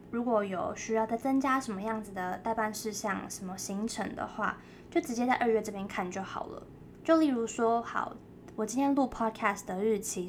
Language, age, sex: Chinese, 20-39, female